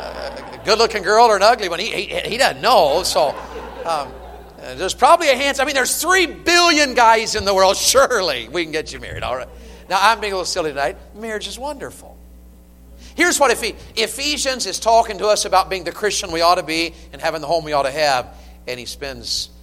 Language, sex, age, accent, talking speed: English, male, 50-69, American, 215 wpm